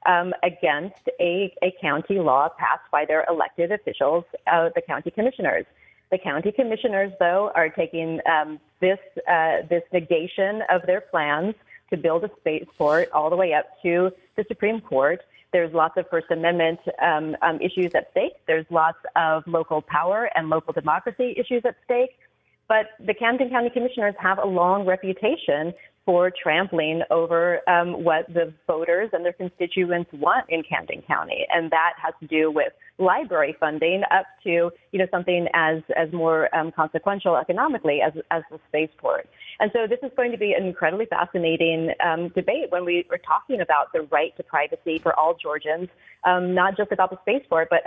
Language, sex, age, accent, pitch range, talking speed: English, female, 30-49, American, 160-195 Hz, 175 wpm